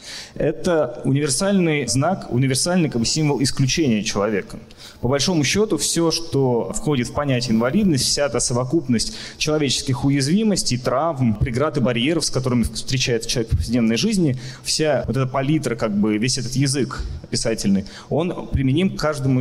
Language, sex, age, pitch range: Russian, male, 20-39, 120-155 Hz